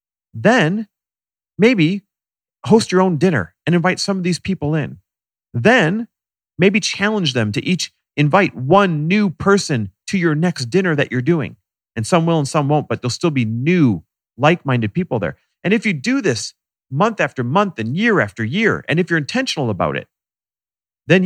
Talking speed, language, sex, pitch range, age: 180 wpm, English, male, 115-185 Hz, 40-59